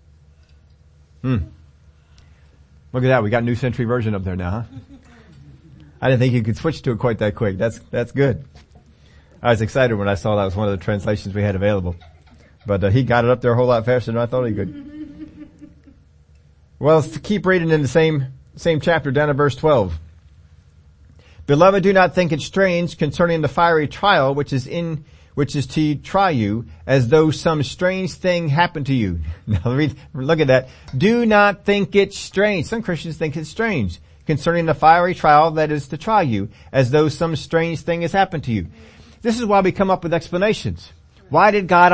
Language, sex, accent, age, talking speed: English, male, American, 40-59, 205 wpm